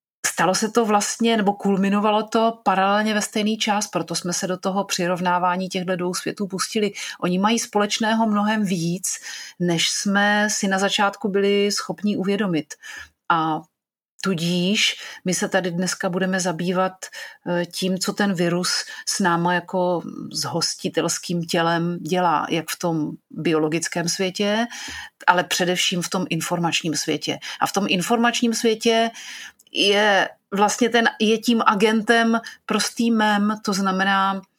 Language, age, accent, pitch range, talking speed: Czech, 40-59, native, 175-210 Hz, 135 wpm